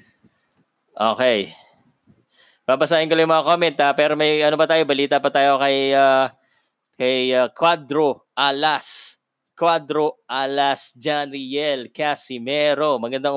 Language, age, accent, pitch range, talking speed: Filipino, 20-39, native, 135-180 Hz, 125 wpm